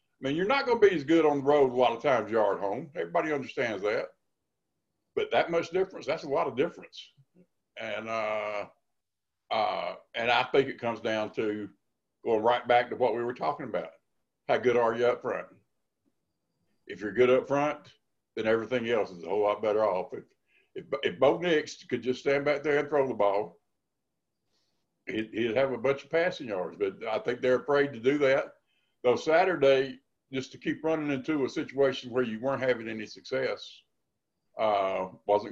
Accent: American